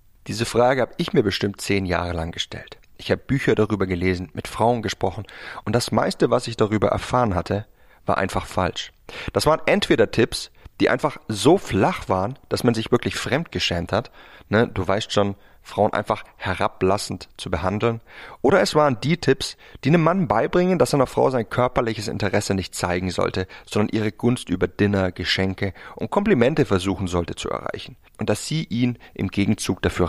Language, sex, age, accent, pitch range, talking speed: German, male, 30-49, German, 95-120 Hz, 180 wpm